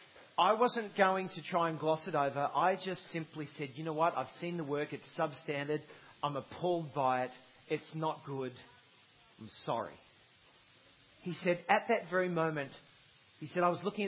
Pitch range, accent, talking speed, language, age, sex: 145-190 Hz, Australian, 180 wpm, English, 40-59, male